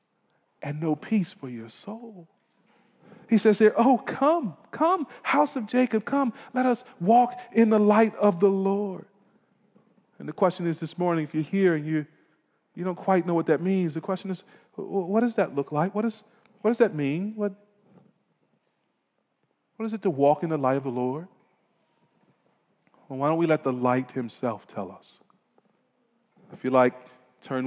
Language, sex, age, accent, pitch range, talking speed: English, male, 40-59, American, 145-210 Hz, 180 wpm